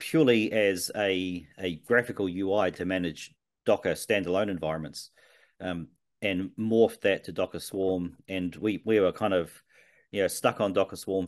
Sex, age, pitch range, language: male, 40-59, 85-100 Hz, English